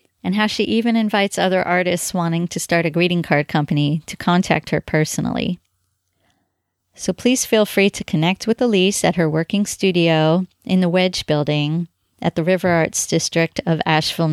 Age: 30-49